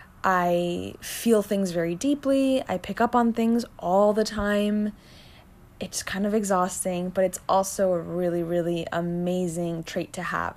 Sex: female